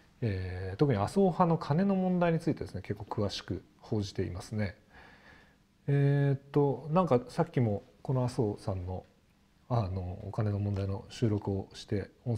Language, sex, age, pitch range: Japanese, male, 40-59, 105-145 Hz